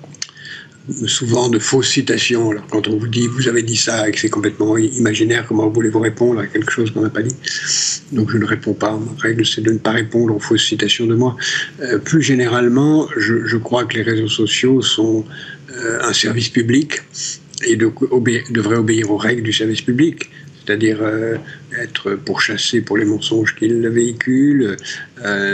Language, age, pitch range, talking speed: French, 50-69, 110-125 Hz, 190 wpm